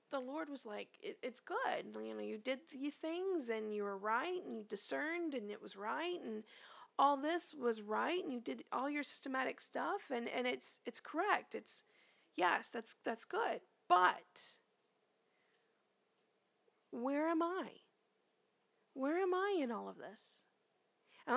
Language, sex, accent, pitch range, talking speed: English, female, American, 260-355 Hz, 160 wpm